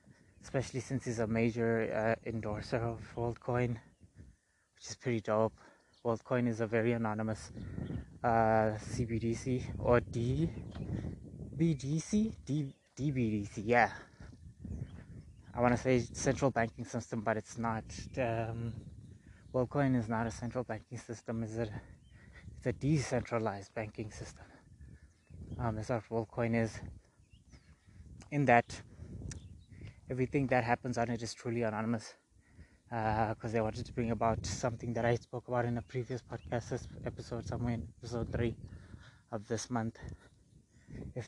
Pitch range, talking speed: 105-120 Hz, 130 wpm